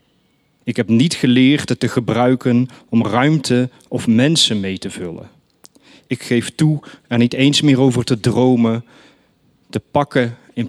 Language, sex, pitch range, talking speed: Dutch, male, 110-135 Hz, 150 wpm